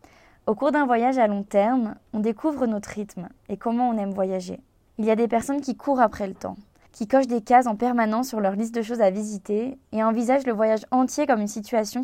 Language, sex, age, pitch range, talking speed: French, female, 20-39, 210-245 Hz, 235 wpm